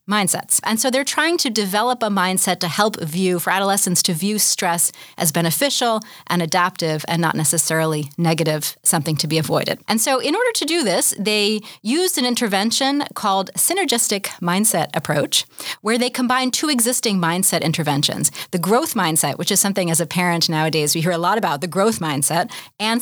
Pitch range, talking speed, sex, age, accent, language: 160-210 Hz, 180 wpm, female, 30-49, American, English